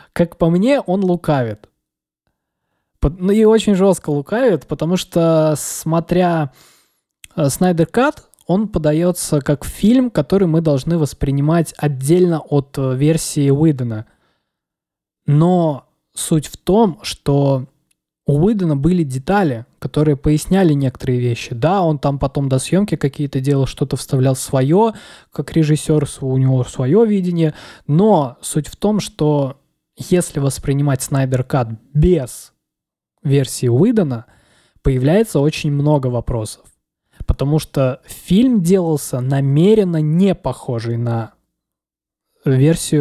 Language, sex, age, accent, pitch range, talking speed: Russian, male, 20-39, native, 135-180 Hz, 115 wpm